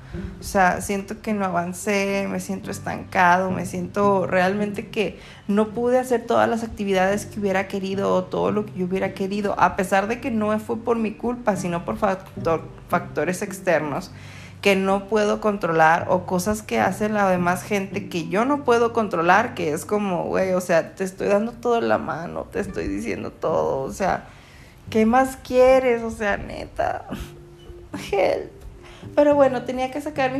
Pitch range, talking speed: 180-235 Hz, 180 wpm